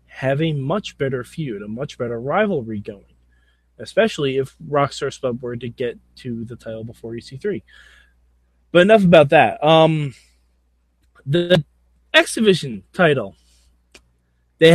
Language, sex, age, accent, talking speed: English, male, 20-39, American, 125 wpm